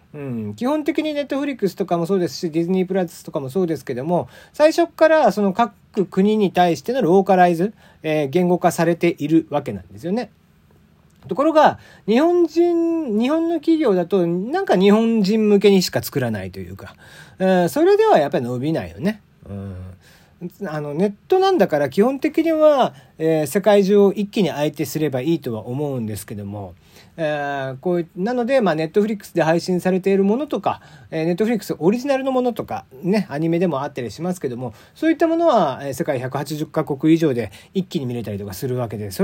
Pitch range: 145-215 Hz